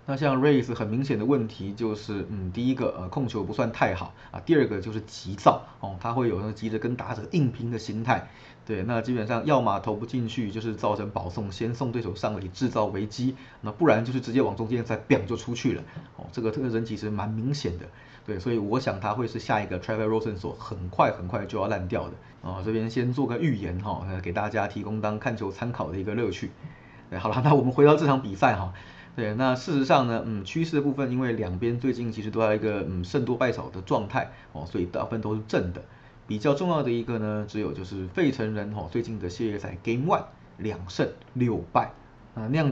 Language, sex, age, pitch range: Chinese, male, 20-39, 105-125 Hz